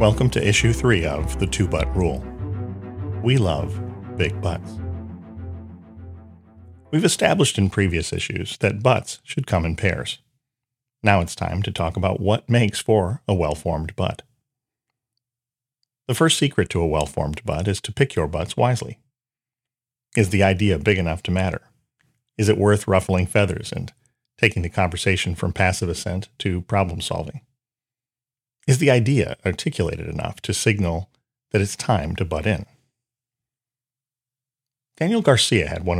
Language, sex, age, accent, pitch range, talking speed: English, male, 40-59, American, 90-125 Hz, 145 wpm